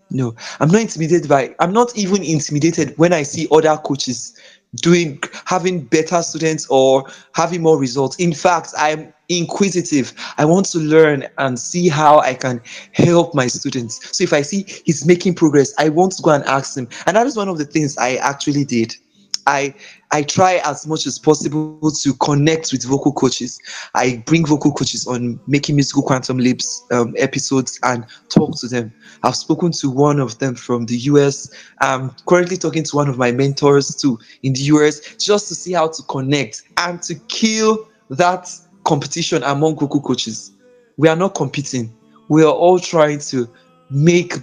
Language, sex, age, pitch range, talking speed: English, male, 20-39, 135-170 Hz, 180 wpm